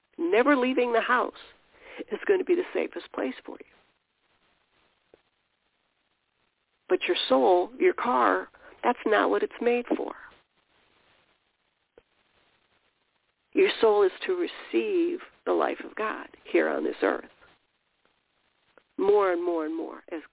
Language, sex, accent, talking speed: English, female, American, 125 wpm